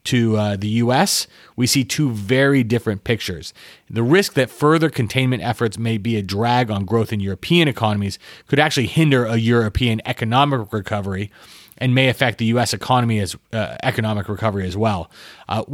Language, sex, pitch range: English, male, 110-135 Hz